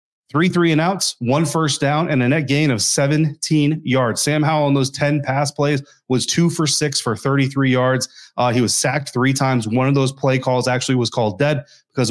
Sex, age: male, 30-49